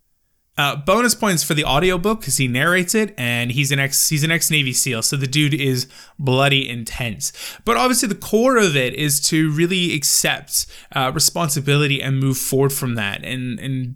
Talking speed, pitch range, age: 185 wpm, 125-155 Hz, 20-39